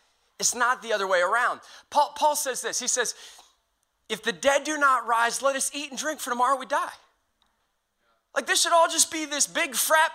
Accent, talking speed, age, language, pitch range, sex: American, 215 wpm, 30-49, English, 245-310 Hz, male